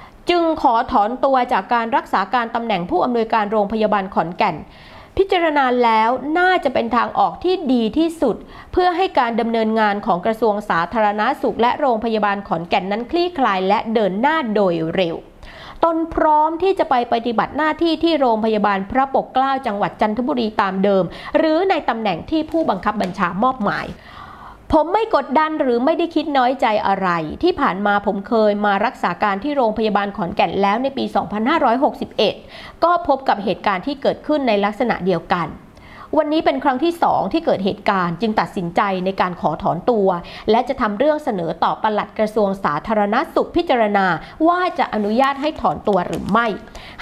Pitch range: 205-295 Hz